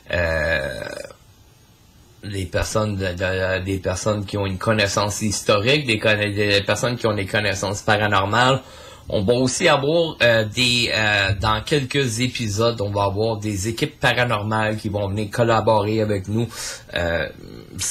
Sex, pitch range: male, 100-120 Hz